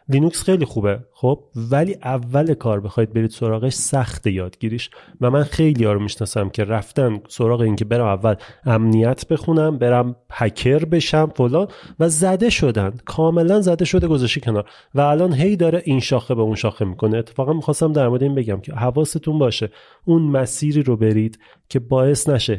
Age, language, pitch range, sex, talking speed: 30-49, Persian, 115-155 Hz, male, 175 wpm